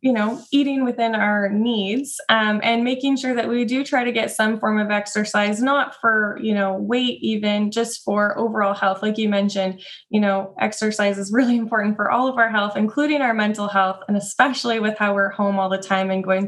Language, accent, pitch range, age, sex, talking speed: English, American, 200-240 Hz, 20-39, female, 215 wpm